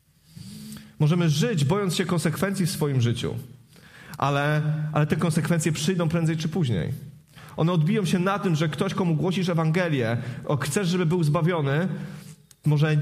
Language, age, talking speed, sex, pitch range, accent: Polish, 30-49, 145 wpm, male, 140-170 Hz, native